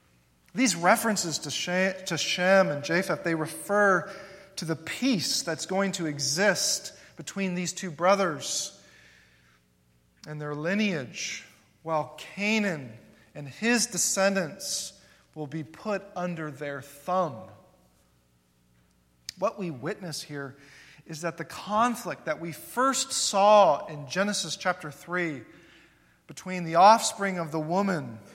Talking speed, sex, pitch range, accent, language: 115 wpm, male, 150-205 Hz, American, English